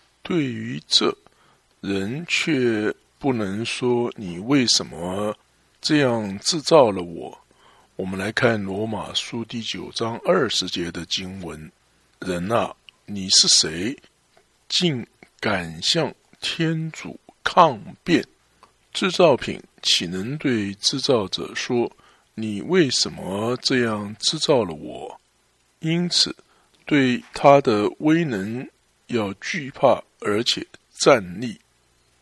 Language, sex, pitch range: English, male, 100-145 Hz